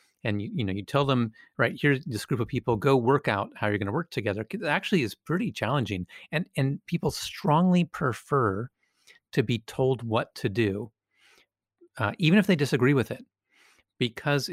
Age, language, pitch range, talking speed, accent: 40-59, English, 110-145 Hz, 190 wpm, American